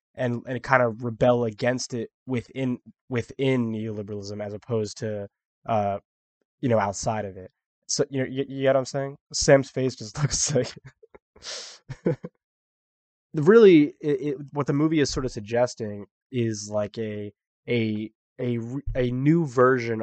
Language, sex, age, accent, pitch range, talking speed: English, male, 20-39, American, 105-130 Hz, 155 wpm